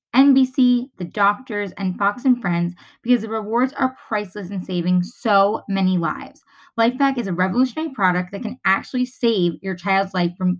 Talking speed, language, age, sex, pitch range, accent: 170 wpm, English, 20-39, female, 190-255 Hz, American